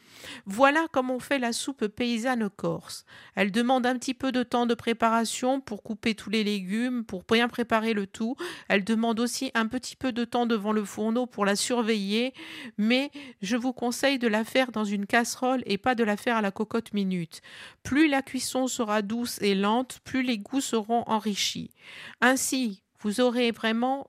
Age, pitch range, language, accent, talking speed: 50-69, 215-255 Hz, French, French, 190 wpm